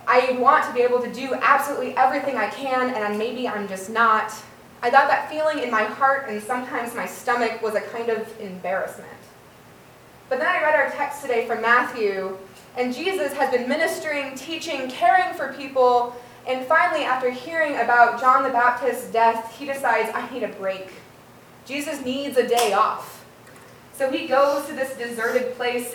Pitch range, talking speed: 230-275 Hz, 180 wpm